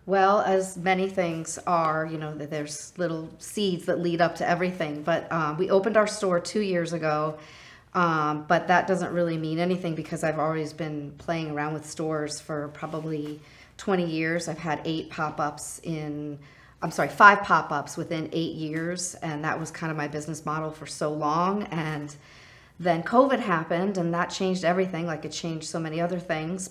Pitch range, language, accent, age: 155-180 Hz, English, American, 40-59